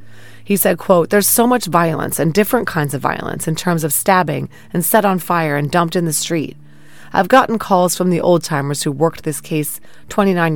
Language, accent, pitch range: English, American, 145-185 Hz